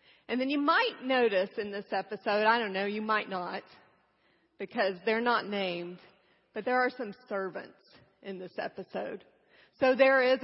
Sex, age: female, 40-59